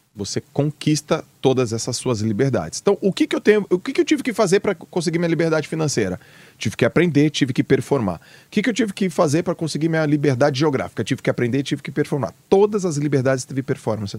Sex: male